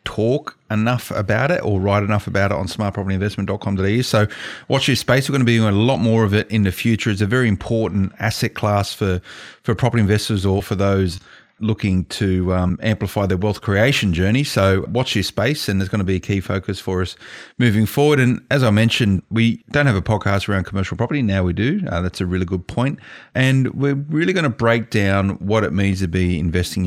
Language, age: English, 30-49